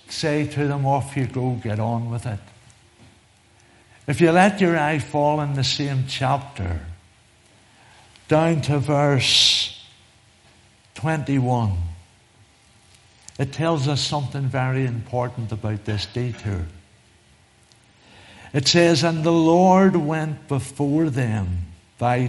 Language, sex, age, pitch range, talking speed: English, male, 60-79, 105-140 Hz, 115 wpm